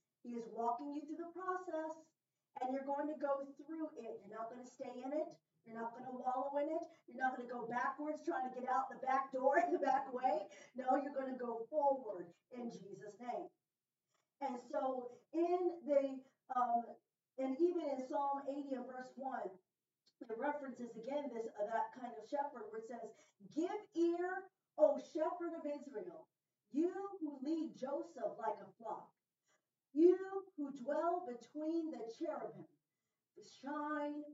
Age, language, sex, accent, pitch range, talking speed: 40-59, English, female, American, 235-300 Hz, 175 wpm